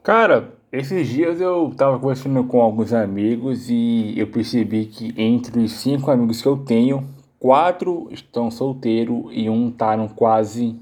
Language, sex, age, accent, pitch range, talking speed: Portuguese, male, 20-39, Brazilian, 110-125 Hz, 150 wpm